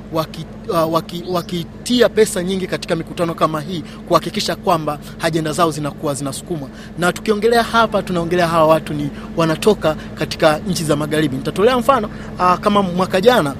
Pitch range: 160-210 Hz